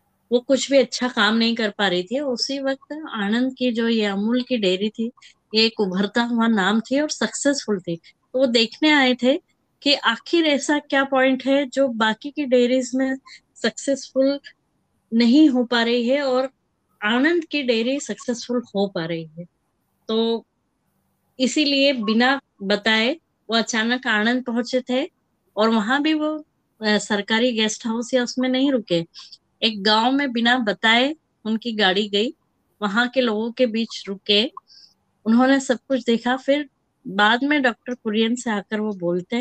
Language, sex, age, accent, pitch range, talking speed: Hindi, female, 20-39, native, 215-265 Hz, 165 wpm